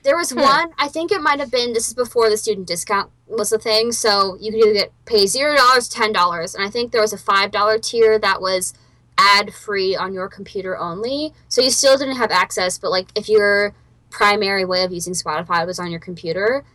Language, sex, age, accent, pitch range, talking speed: English, female, 10-29, American, 185-250 Hz, 230 wpm